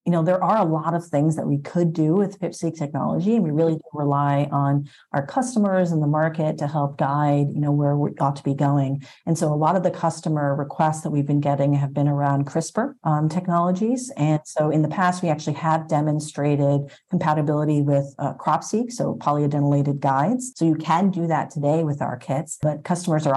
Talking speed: 215 wpm